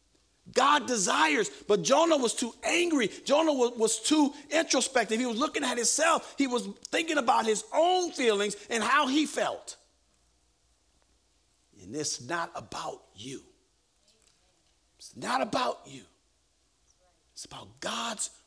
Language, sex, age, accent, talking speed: English, male, 50-69, American, 130 wpm